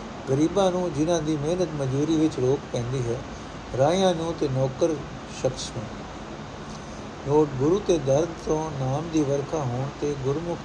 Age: 60-79